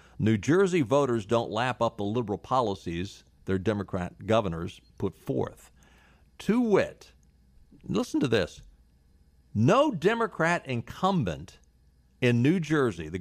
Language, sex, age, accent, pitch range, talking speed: English, male, 50-69, American, 90-130 Hz, 120 wpm